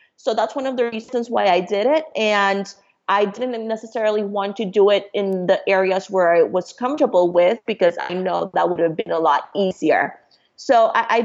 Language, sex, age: English, female, 30-49